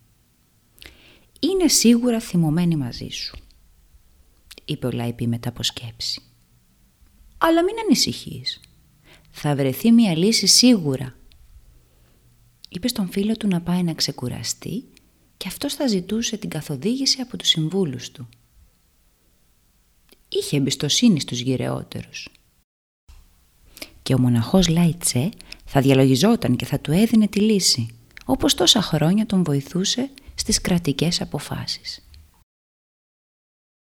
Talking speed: 110 wpm